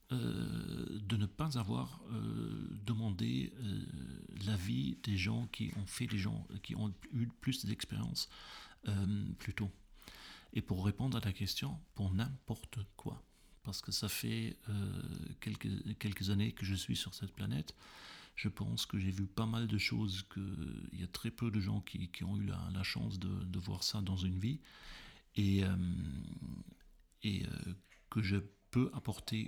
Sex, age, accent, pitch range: male, 40-59, French, 95-115 Hz